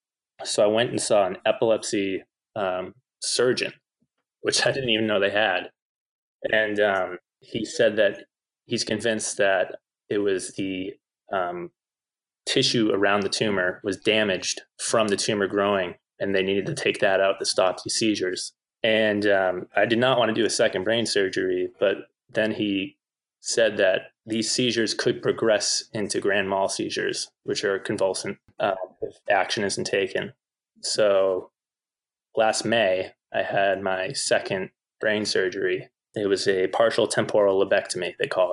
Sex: male